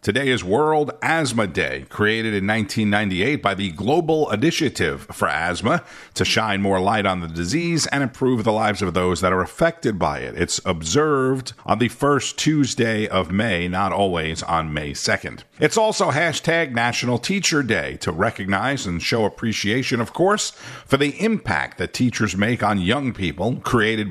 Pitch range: 100-145 Hz